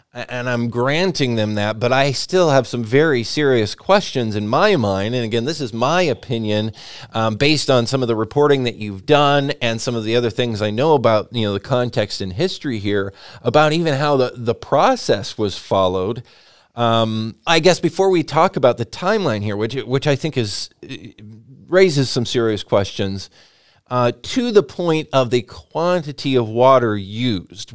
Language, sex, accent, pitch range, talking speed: English, male, American, 115-145 Hz, 185 wpm